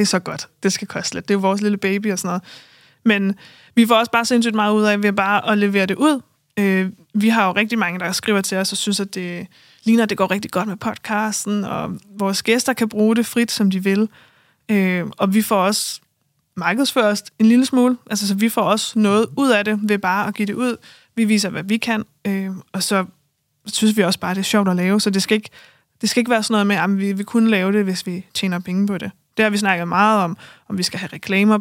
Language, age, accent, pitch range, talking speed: Danish, 20-39, native, 185-220 Hz, 260 wpm